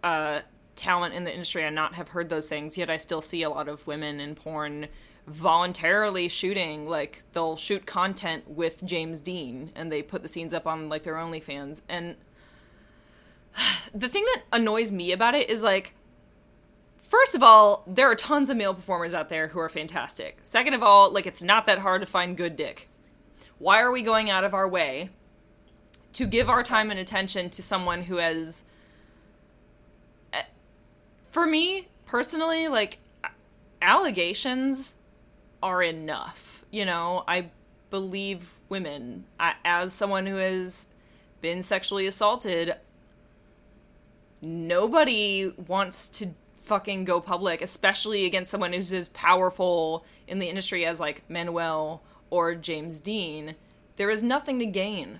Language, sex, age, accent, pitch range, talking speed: English, female, 20-39, American, 165-200 Hz, 150 wpm